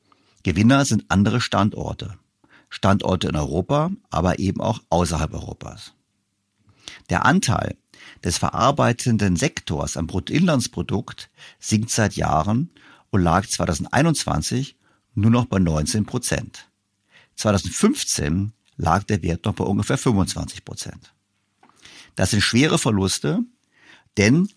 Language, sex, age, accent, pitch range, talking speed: German, male, 50-69, German, 90-120 Hz, 105 wpm